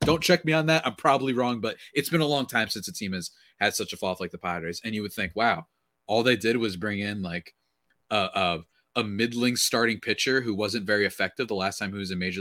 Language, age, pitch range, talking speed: English, 30-49, 100-155 Hz, 265 wpm